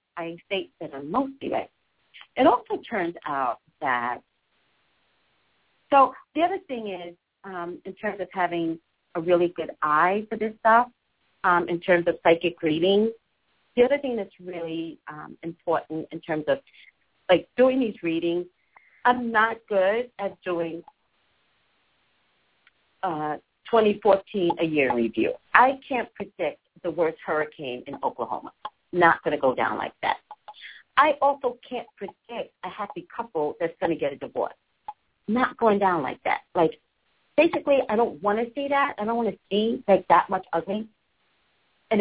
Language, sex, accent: English, female, American